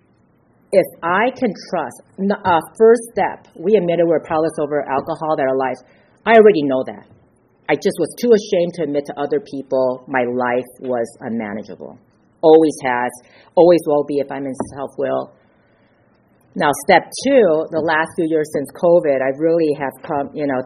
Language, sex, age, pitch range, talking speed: English, female, 50-69, 130-175 Hz, 170 wpm